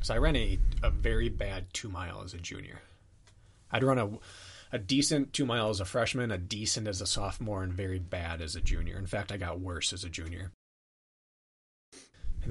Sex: male